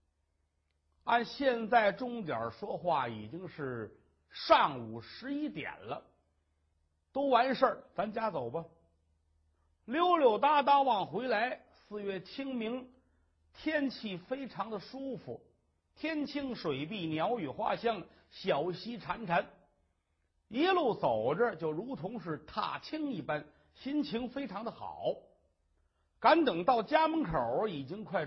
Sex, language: male, Chinese